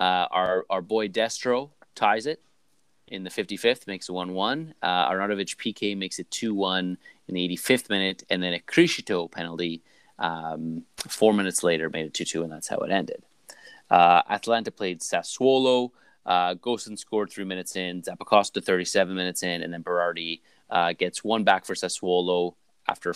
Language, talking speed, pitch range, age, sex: English, 165 wpm, 90-105 Hz, 30-49, male